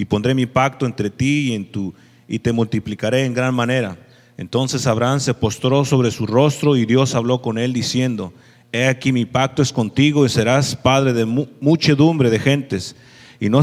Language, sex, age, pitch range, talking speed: English, male, 40-59, 115-140 Hz, 190 wpm